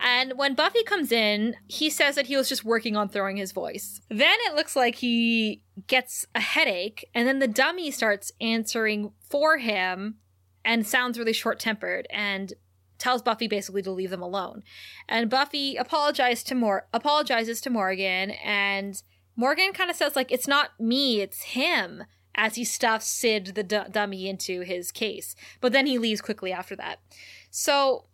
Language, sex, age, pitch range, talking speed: English, female, 20-39, 200-255 Hz, 175 wpm